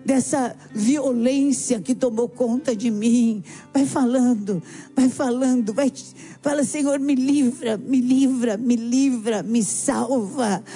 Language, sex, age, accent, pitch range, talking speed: Portuguese, female, 50-69, Brazilian, 245-300 Hz, 115 wpm